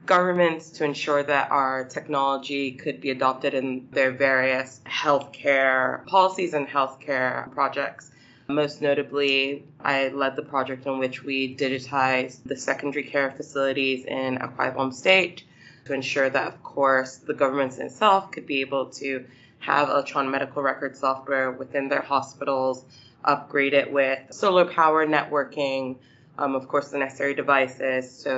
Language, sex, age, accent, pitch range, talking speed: English, female, 20-39, American, 130-140 Hz, 140 wpm